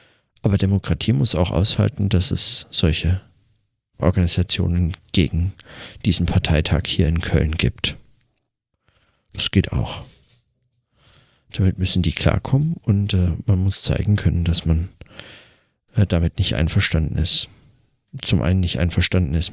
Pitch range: 85-105 Hz